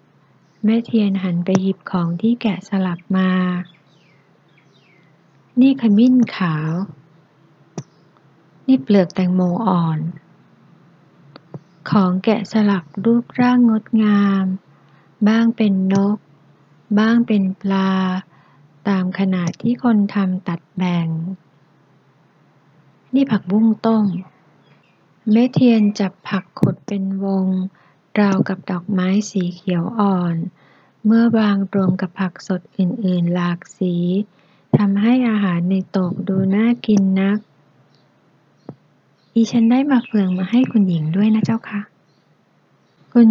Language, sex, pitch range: Thai, female, 170-215 Hz